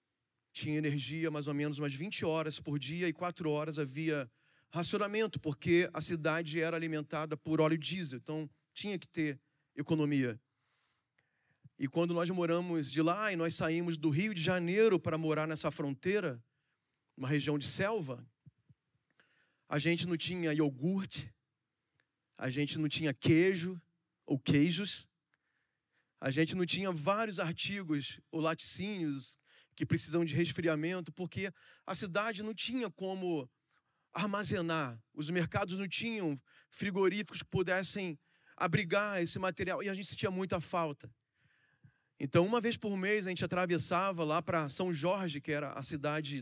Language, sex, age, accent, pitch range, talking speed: Portuguese, male, 40-59, Brazilian, 145-175 Hz, 145 wpm